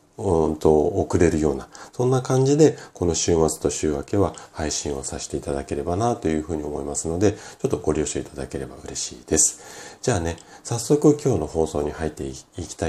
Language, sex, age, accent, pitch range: Japanese, male, 40-59, native, 75-110 Hz